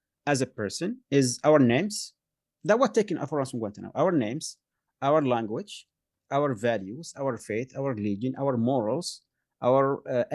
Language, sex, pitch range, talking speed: English, male, 135-210 Hz, 155 wpm